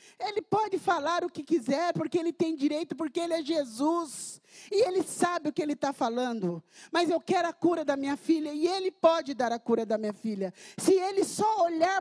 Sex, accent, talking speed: male, Brazilian, 215 wpm